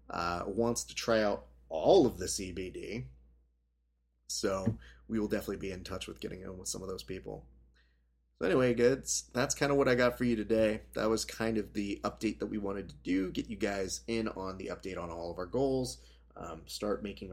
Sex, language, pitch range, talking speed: male, English, 85-110 Hz, 215 wpm